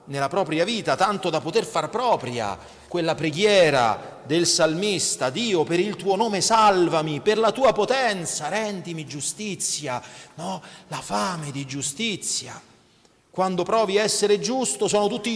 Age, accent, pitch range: 40-59, native, 145-210 Hz